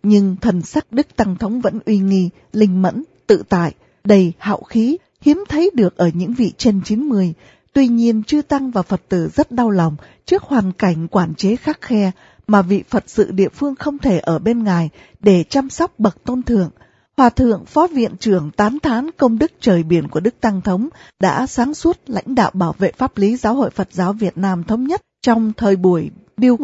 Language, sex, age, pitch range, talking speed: Vietnamese, female, 20-39, 185-245 Hz, 210 wpm